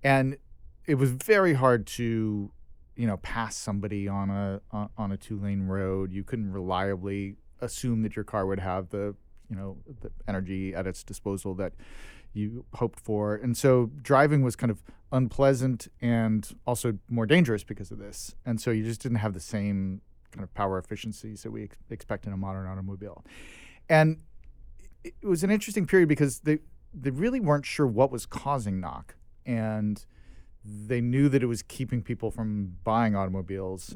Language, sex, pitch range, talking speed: English, male, 95-120 Hz, 175 wpm